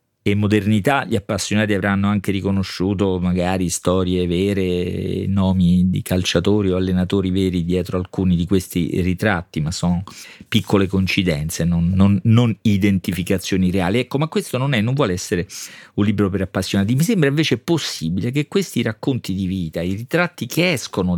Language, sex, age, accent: Italian, male, 40-59, native